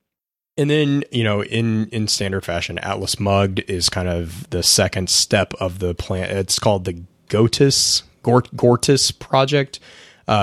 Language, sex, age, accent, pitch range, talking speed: English, male, 20-39, American, 95-115 Hz, 150 wpm